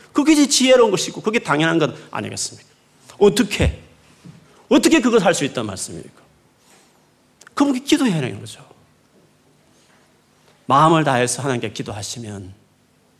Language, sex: Korean, male